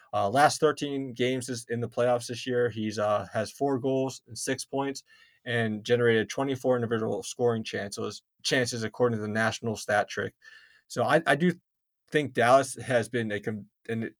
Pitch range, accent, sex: 110-130 Hz, American, male